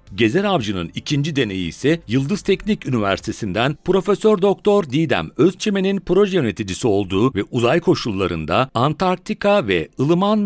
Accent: native